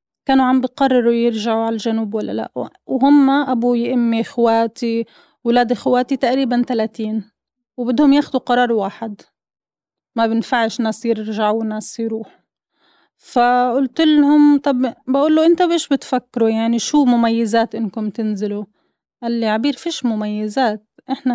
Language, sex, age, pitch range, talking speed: Arabic, female, 30-49, 225-275 Hz, 125 wpm